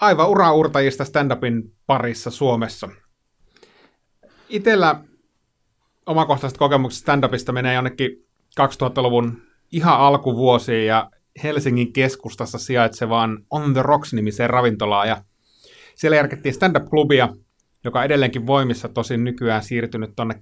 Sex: male